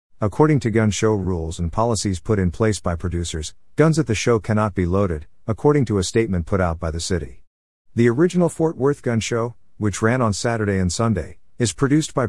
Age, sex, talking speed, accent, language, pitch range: 50-69, male, 210 wpm, American, English, 90-115 Hz